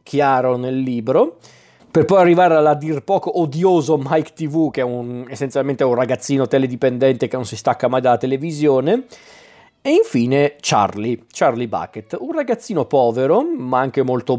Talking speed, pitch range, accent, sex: 155 wpm, 125-155 Hz, native, male